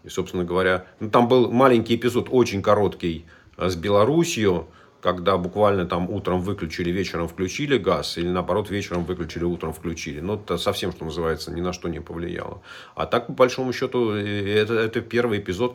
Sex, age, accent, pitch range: male, 40-59, native, 85-105 Hz